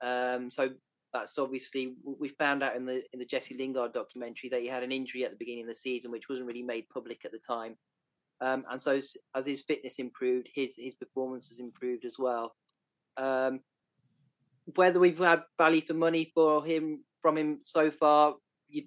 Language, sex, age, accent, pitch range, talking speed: English, male, 30-49, British, 125-155 Hz, 195 wpm